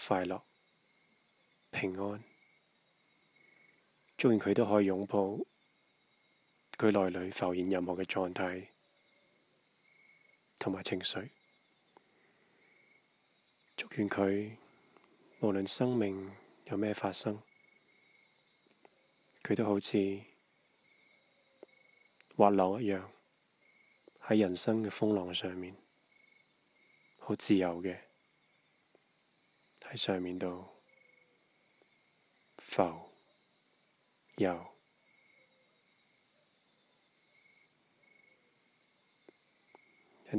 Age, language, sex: 20-39, English, male